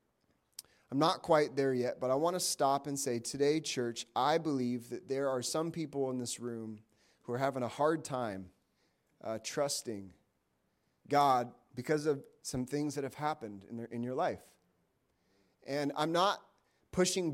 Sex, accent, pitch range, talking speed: male, American, 120-150 Hz, 170 wpm